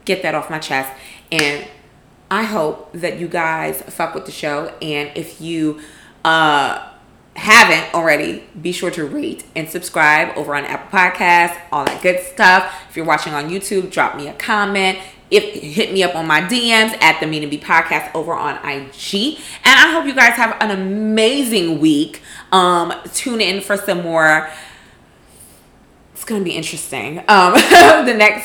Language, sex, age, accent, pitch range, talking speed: English, female, 20-39, American, 155-215 Hz, 175 wpm